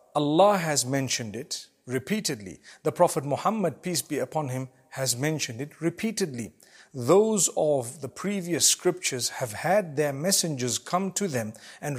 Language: English